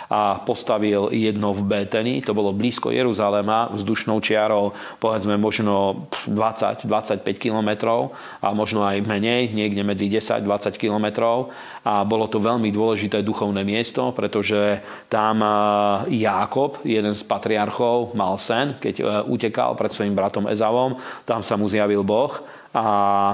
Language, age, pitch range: Slovak, 40-59, 105-115 Hz